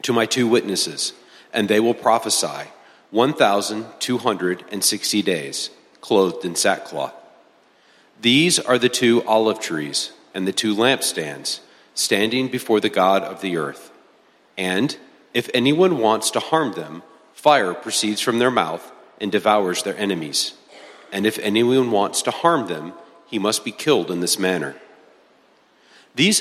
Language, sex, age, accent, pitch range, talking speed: English, male, 40-59, American, 95-125 Hz, 150 wpm